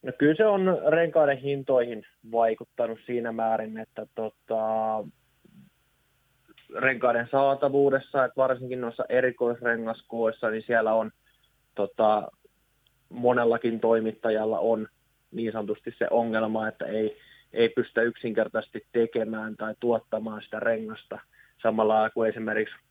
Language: Finnish